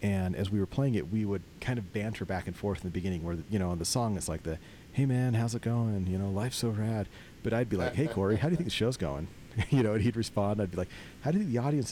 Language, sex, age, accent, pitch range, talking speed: English, male, 40-59, American, 85-110 Hz, 315 wpm